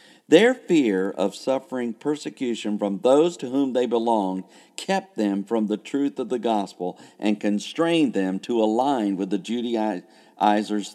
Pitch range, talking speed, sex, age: 100-140 Hz, 150 wpm, male, 50-69